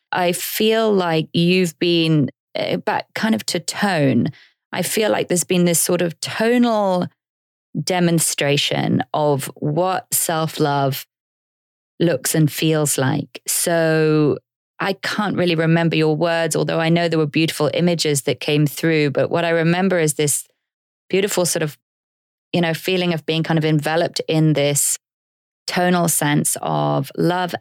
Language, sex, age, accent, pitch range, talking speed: English, female, 20-39, British, 150-180 Hz, 145 wpm